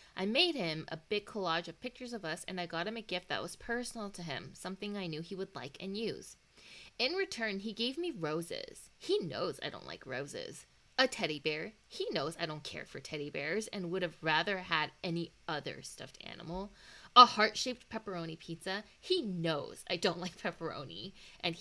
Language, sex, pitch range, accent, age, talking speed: English, female, 170-245 Hz, American, 20-39, 200 wpm